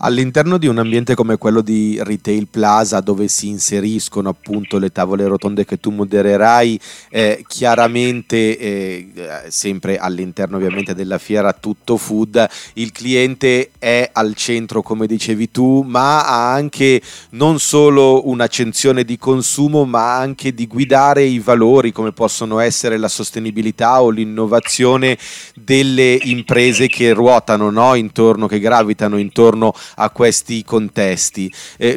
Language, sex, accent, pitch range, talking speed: Italian, male, native, 110-130 Hz, 135 wpm